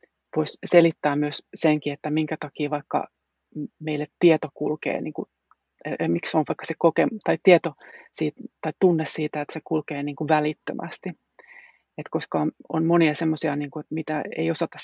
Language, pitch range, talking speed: Finnish, 150-165 Hz, 155 wpm